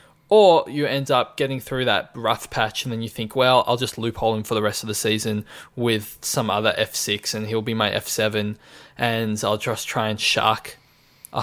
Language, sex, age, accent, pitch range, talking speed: English, male, 20-39, Australian, 110-135 Hz, 210 wpm